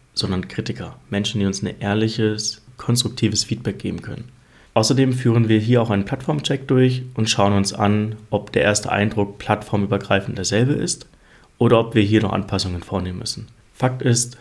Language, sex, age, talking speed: German, male, 30-49, 165 wpm